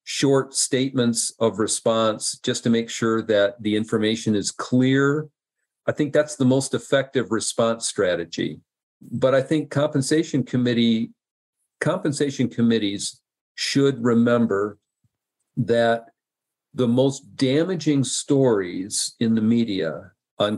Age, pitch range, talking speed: 50-69, 110-130 Hz, 115 wpm